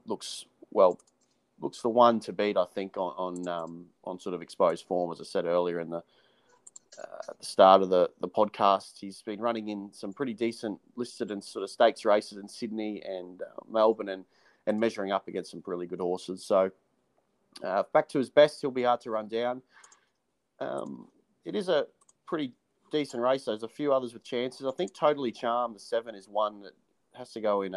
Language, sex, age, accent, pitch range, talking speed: English, male, 30-49, Australian, 95-120 Hz, 205 wpm